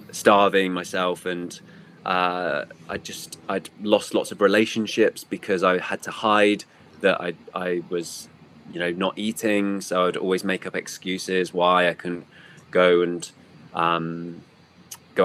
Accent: British